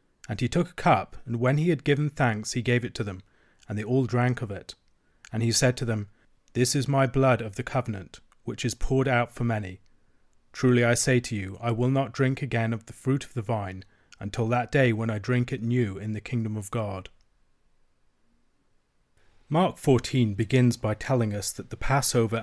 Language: English